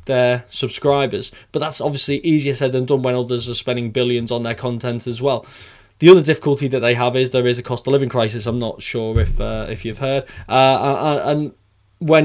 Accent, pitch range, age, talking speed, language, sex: British, 120-140 Hz, 10-29, 215 wpm, English, male